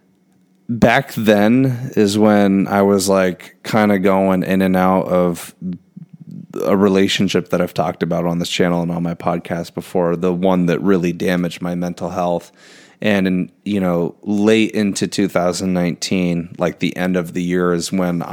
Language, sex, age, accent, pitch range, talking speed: English, male, 30-49, American, 90-100 Hz, 165 wpm